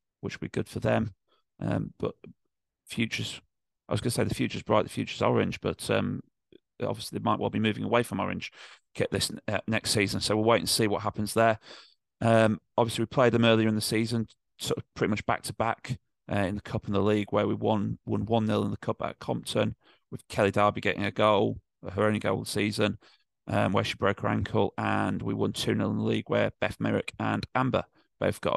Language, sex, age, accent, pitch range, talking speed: English, male, 30-49, British, 100-120 Hz, 225 wpm